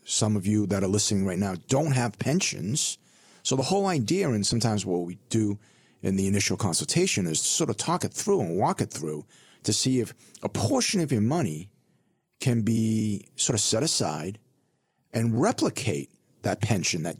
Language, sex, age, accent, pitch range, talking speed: English, male, 50-69, American, 100-130 Hz, 185 wpm